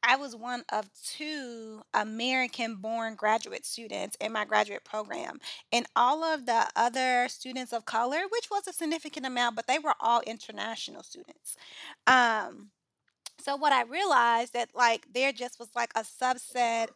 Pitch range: 220-250 Hz